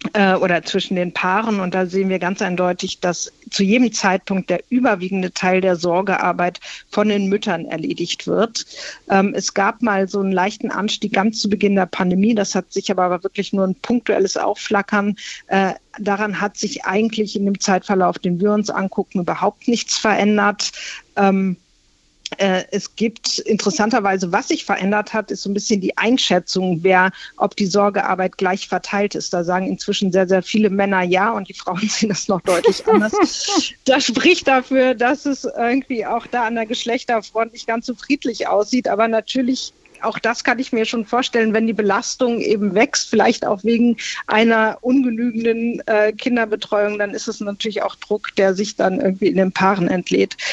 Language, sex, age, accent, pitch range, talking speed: German, female, 50-69, German, 190-225 Hz, 175 wpm